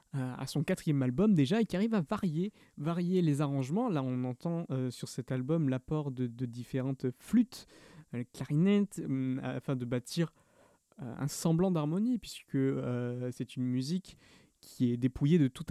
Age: 20-39